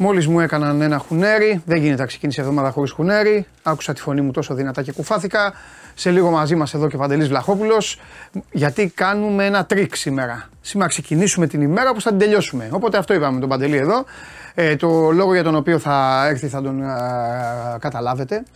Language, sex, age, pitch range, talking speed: Greek, male, 30-49, 150-200 Hz, 195 wpm